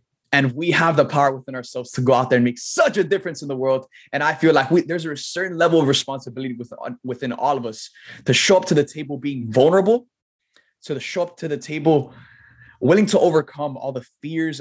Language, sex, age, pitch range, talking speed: English, male, 20-39, 125-150 Hz, 220 wpm